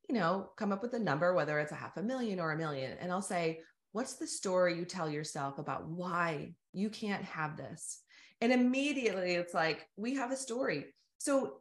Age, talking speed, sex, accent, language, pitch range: 30-49, 205 wpm, female, American, English, 165-230 Hz